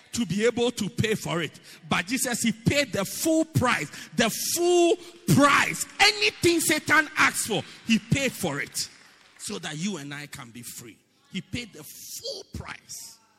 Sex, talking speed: male, 170 wpm